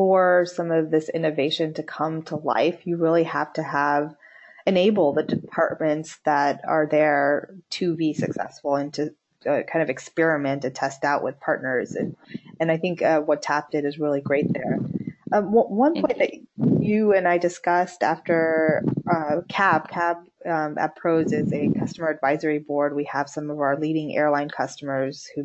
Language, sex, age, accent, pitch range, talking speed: English, female, 20-39, American, 150-180 Hz, 175 wpm